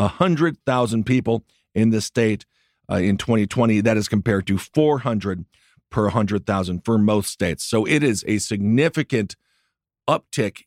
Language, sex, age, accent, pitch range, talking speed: English, male, 40-59, American, 100-115 Hz, 130 wpm